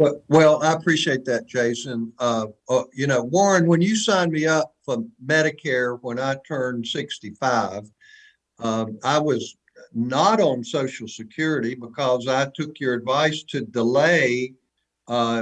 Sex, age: male, 50-69